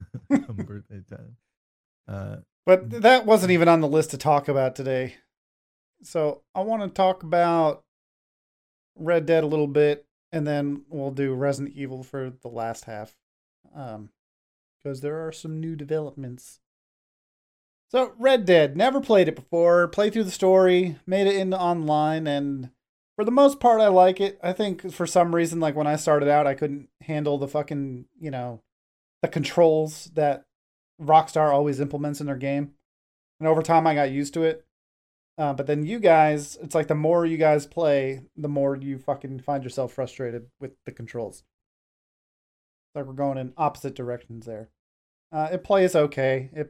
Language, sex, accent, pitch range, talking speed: English, male, American, 130-165 Hz, 165 wpm